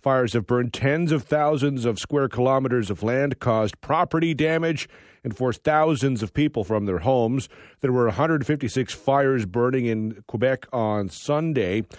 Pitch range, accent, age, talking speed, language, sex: 115-150 Hz, American, 40-59, 155 wpm, English, male